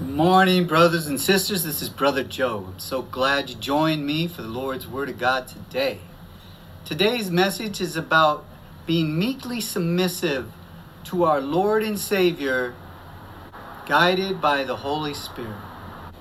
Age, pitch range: 50-69, 125-190 Hz